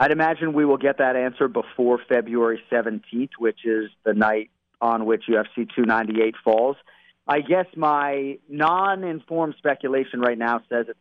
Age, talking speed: 40-59, 155 wpm